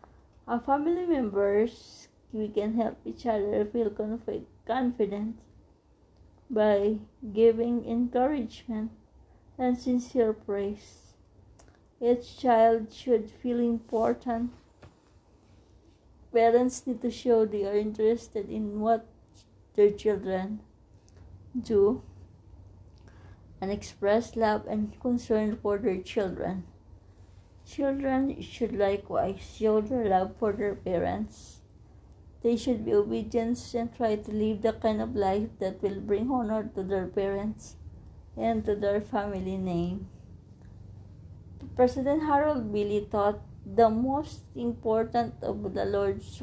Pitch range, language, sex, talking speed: 155-230 Hz, English, female, 110 wpm